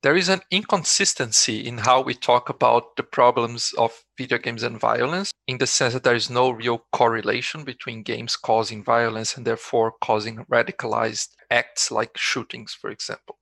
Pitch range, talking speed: 120-135 Hz, 170 wpm